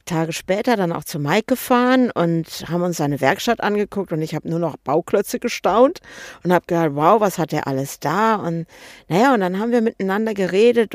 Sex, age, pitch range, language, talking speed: female, 60-79, 170-225 Hz, German, 205 wpm